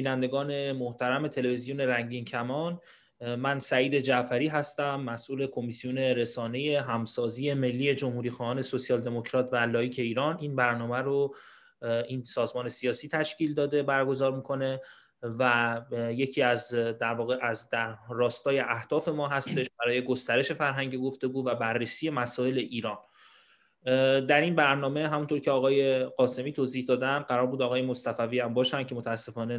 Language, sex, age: Persian, male, 20-39